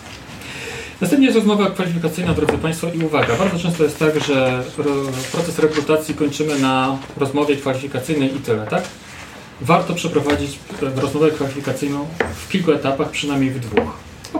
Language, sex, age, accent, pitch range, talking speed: Polish, male, 40-59, native, 130-170 Hz, 140 wpm